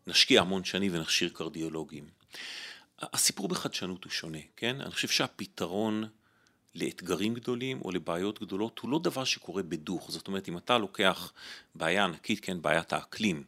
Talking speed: 145 wpm